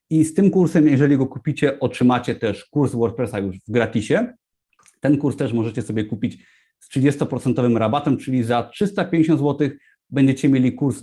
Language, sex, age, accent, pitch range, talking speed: Polish, male, 30-49, native, 130-160 Hz, 165 wpm